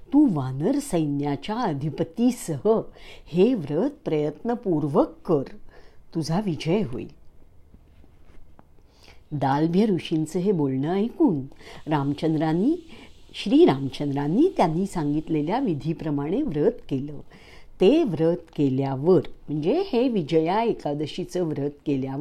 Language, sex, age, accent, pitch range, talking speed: English, female, 60-79, Indian, 140-205 Hz, 110 wpm